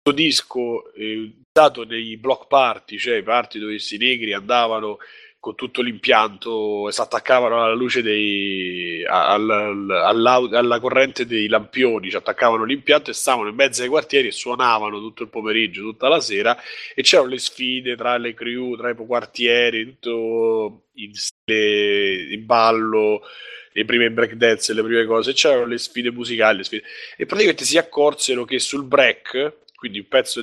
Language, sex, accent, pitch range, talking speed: Italian, male, native, 110-150 Hz, 170 wpm